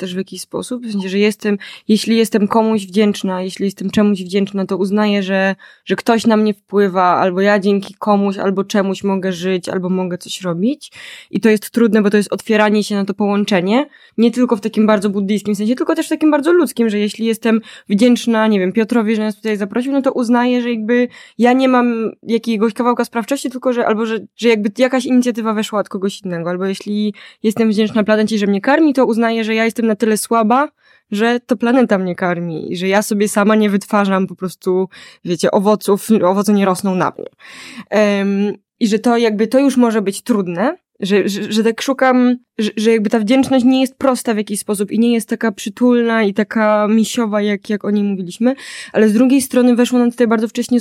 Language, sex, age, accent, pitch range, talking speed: Polish, female, 20-39, native, 200-240 Hz, 215 wpm